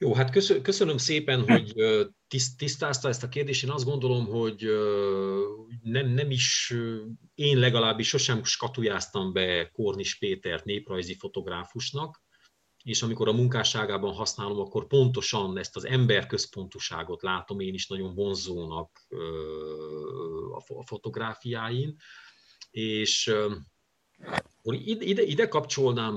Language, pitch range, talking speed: Hungarian, 100-135 Hz, 110 wpm